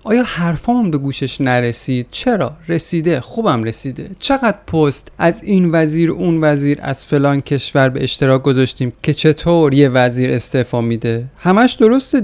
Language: Persian